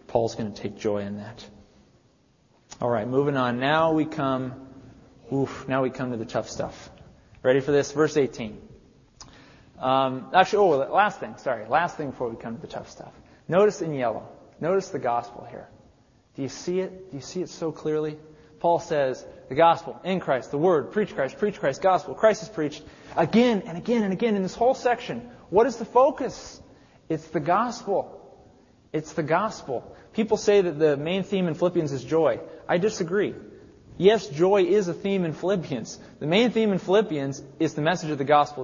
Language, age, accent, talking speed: English, 30-49, American, 190 wpm